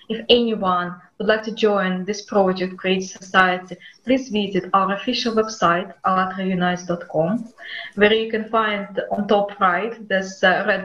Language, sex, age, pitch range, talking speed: English, female, 20-39, 185-220 Hz, 140 wpm